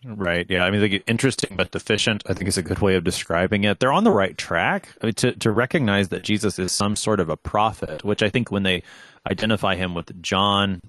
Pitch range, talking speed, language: 90-110 Hz, 235 wpm, English